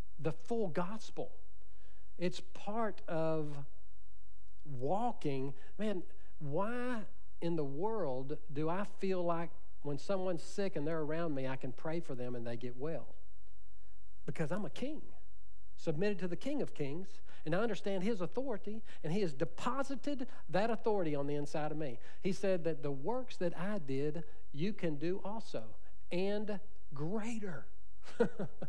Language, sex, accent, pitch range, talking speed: English, male, American, 140-205 Hz, 150 wpm